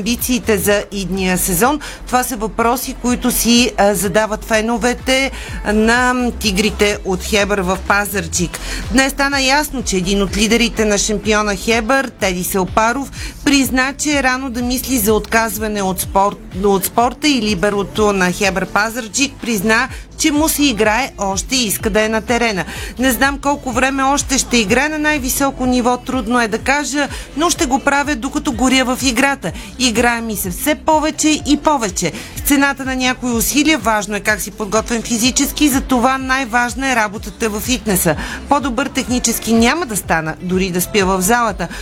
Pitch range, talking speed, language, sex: 210-265 Hz, 165 wpm, Bulgarian, female